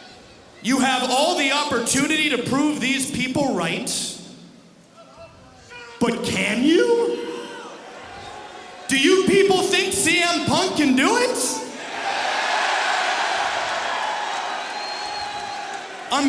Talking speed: 85 wpm